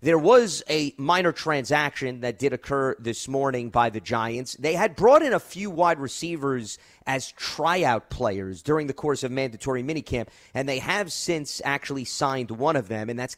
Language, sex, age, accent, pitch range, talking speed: English, male, 30-49, American, 120-155 Hz, 185 wpm